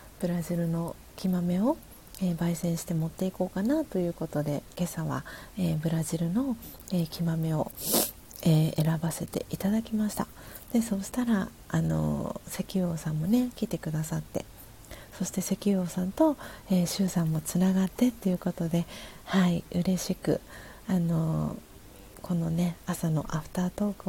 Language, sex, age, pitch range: Japanese, female, 40-59, 170-220 Hz